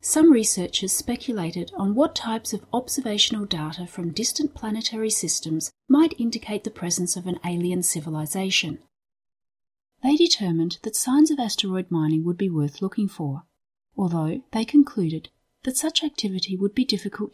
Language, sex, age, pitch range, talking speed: English, female, 40-59, 175-260 Hz, 145 wpm